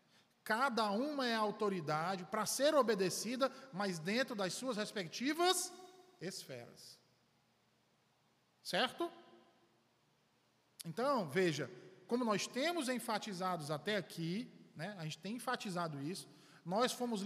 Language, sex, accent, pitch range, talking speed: Portuguese, male, Brazilian, 175-245 Hz, 105 wpm